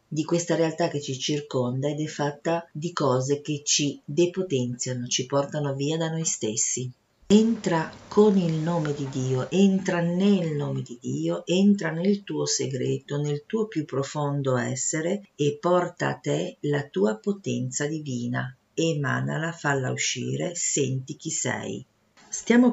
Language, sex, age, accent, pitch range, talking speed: Italian, female, 50-69, native, 135-175 Hz, 145 wpm